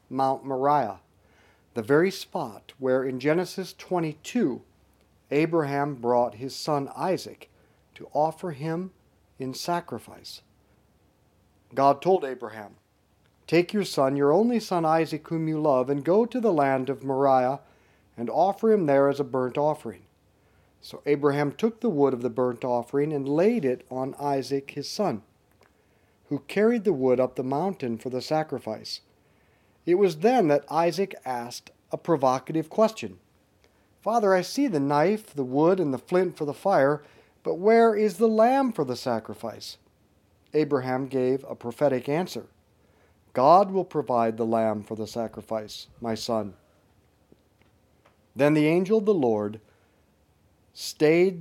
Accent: American